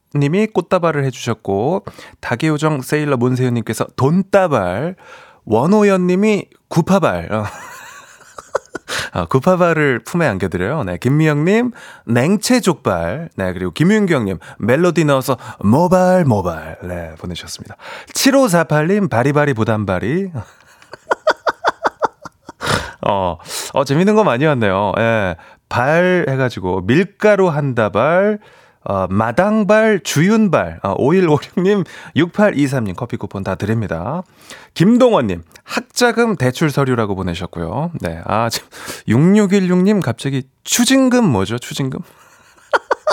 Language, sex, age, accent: Korean, male, 30-49, native